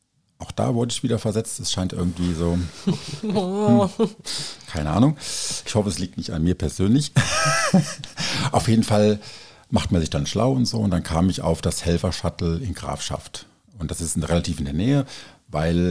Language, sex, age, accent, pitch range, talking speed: German, male, 50-69, German, 80-105 Hz, 180 wpm